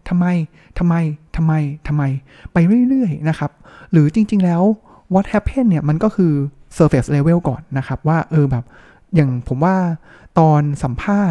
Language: Thai